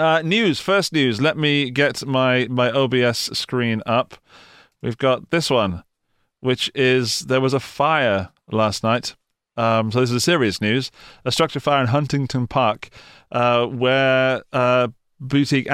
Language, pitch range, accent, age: English, 115-140 Hz, British, 30-49